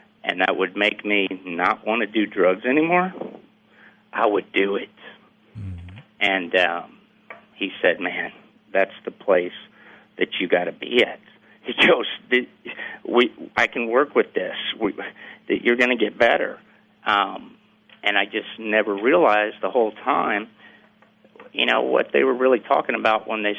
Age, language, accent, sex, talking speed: 50-69, English, American, male, 160 wpm